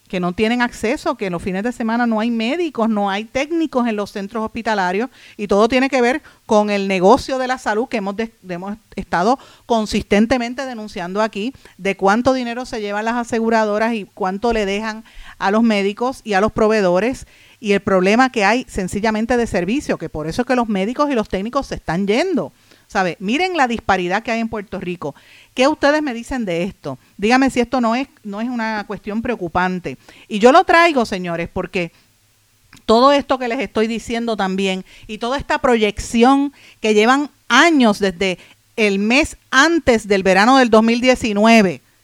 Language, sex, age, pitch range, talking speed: Spanish, female, 40-59, 195-250 Hz, 185 wpm